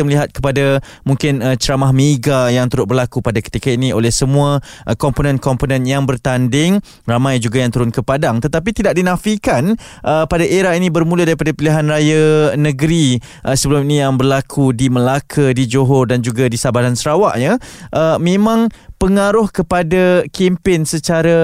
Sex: male